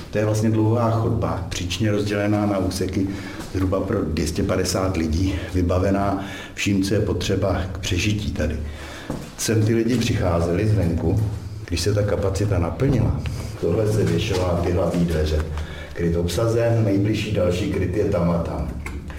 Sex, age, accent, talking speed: male, 60-79, native, 145 wpm